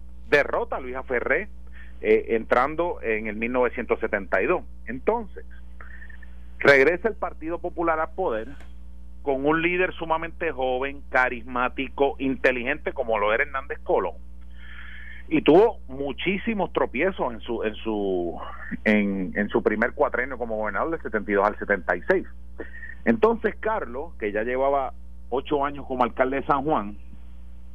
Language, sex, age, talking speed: Spanish, male, 40-59, 130 wpm